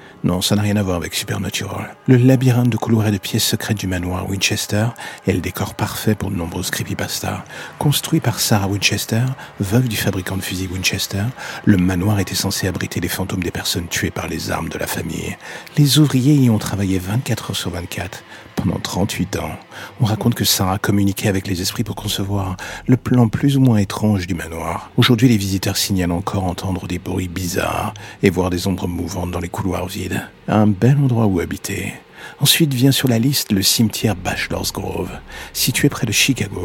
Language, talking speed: French, 195 wpm